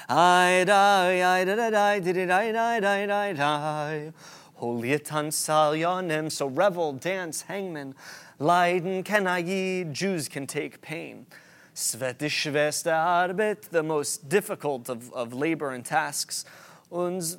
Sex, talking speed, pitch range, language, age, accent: male, 120 wpm, 150-190 Hz, English, 30-49, American